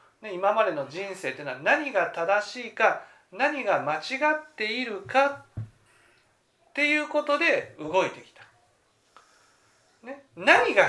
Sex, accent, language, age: male, native, Japanese, 40-59